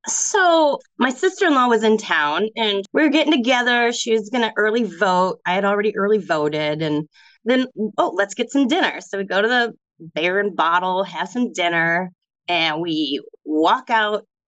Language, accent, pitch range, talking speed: English, American, 180-270 Hz, 180 wpm